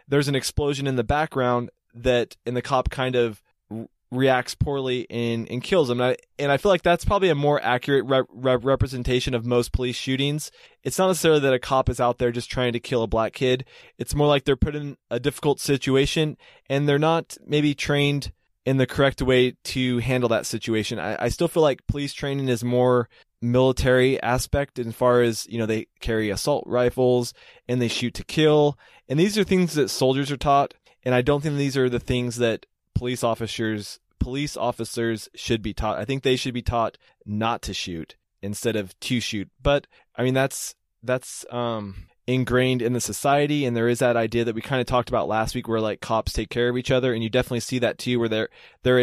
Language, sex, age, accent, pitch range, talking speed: English, male, 20-39, American, 115-135 Hz, 210 wpm